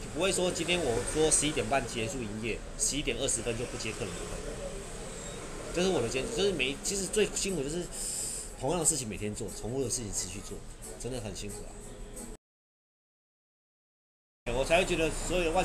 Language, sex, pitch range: English, male, 115-175 Hz